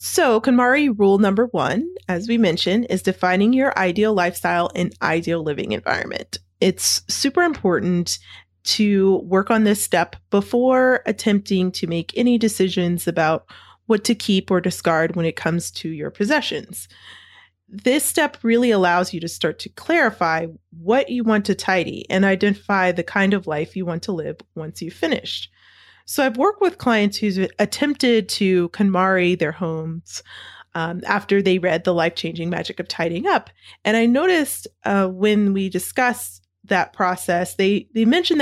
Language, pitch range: English, 170-225 Hz